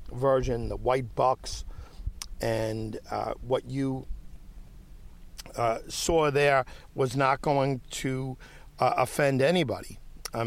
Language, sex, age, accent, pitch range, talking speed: English, male, 50-69, American, 105-135 Hz, 110 wpm